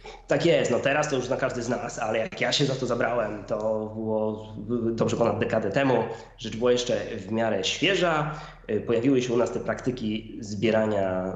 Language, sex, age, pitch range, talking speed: Polish, male, 20-39, 110-125 Hz, 190 wpm